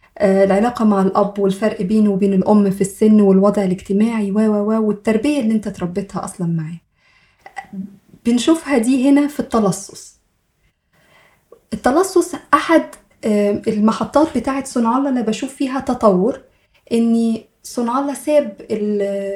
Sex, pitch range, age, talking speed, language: female, 205-250 Hz, 20-39, 110 wpm, Arabic